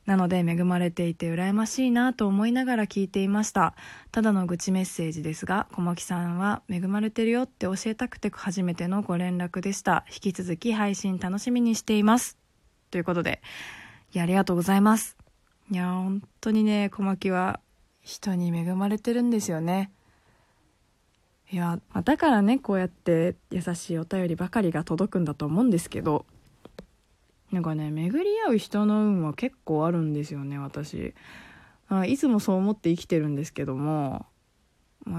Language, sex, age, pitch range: Japanese, female, 20-39, 170-215 Hz